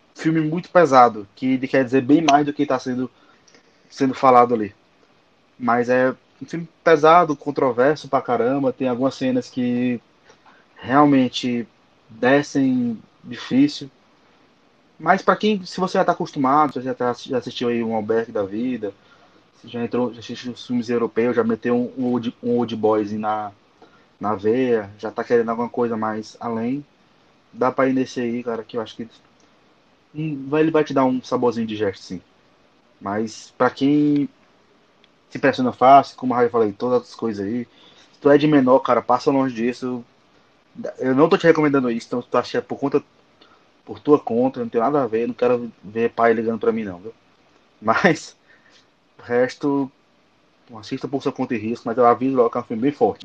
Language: Portuguese